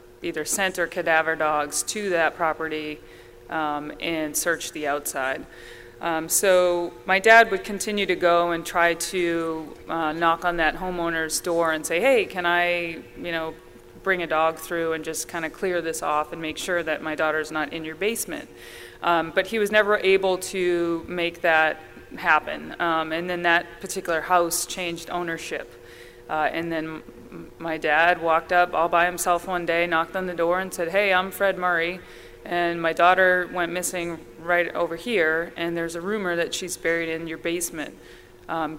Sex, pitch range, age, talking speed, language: female, 155-175 Hz, 30-49, 180 wpm, English